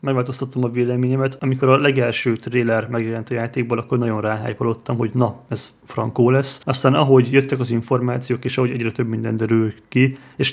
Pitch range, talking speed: 115-130 Hz, 175 wpm